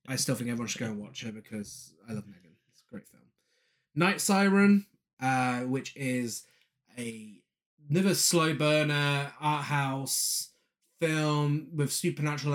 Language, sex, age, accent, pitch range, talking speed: English, male, 20-39, British, 125-155 Hz, 150 wpm